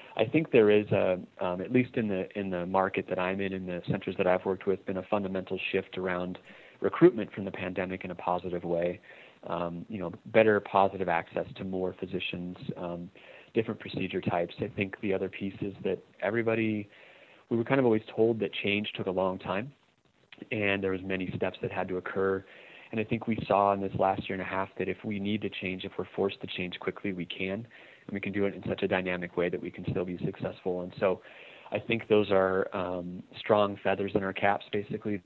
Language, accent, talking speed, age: English, American, 225 wpm, 30-49